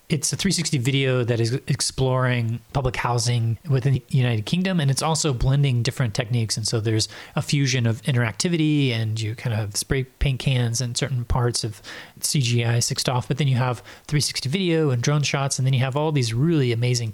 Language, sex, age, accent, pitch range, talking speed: English, male, 30-49, American, 115-145 Hz, 200 wpm